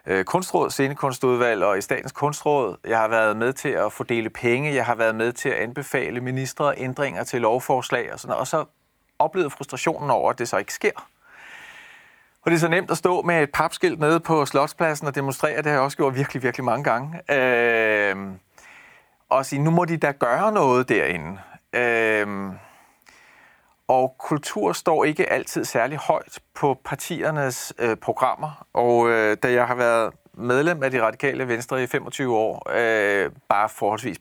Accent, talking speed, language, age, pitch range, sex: native, 170 wpm, Danish, 30-49, 120-150 Hz, male